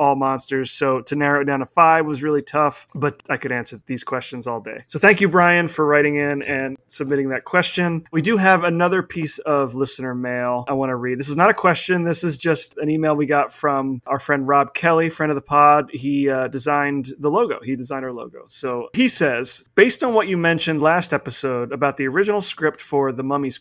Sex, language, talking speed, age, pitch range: male, English, 230 wpm, 30-49, 135-165 Hz